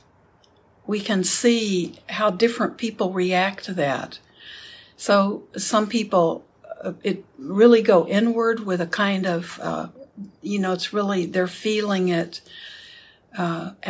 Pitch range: 175-210 Hz